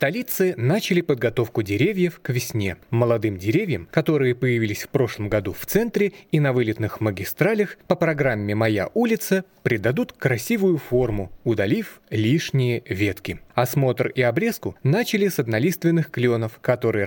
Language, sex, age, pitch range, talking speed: Russian, male, 30-49, 115-170 Hz, 130 wpm